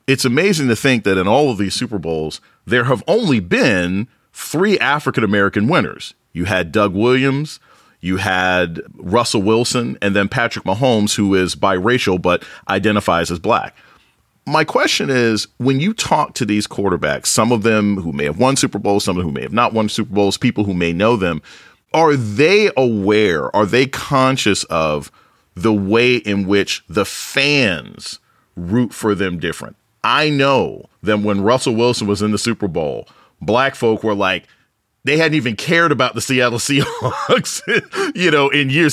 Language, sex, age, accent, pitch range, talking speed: English, male, 40-59, American, 100-135 Hz, 175 wpm